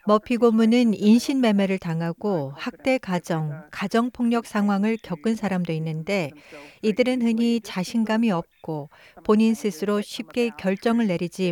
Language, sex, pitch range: Korean, female, 175-230 Hz